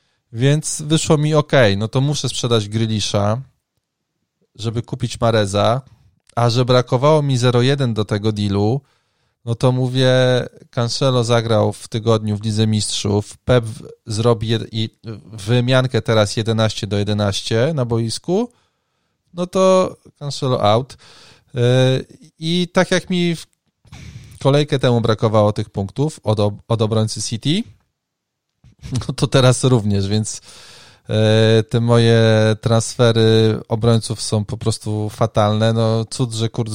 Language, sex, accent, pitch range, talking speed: Polish, male, native, 105-130 Hz, 115 wpm